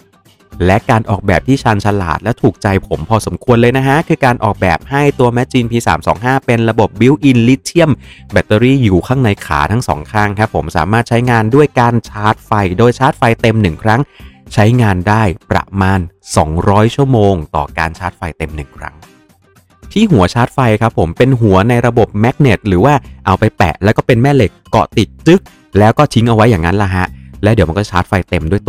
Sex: male